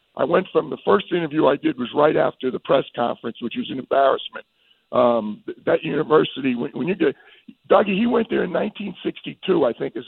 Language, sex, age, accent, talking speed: English, male, 50-69, American, 200 wpm